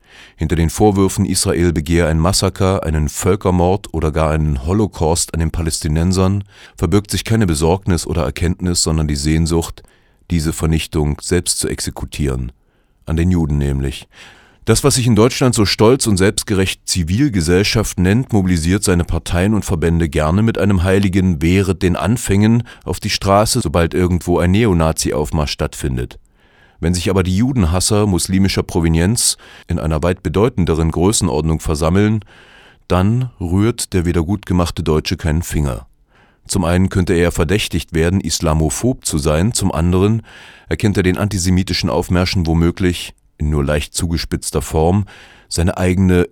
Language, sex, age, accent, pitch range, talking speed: German, male, 30-49, German, 80-100 Hz, 145 wpm